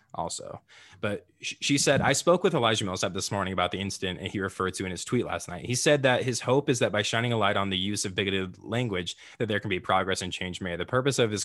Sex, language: male, English